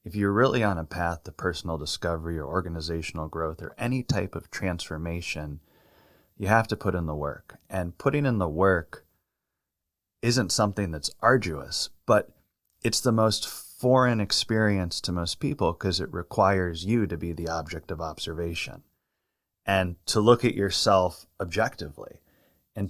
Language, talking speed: English, 155 wpm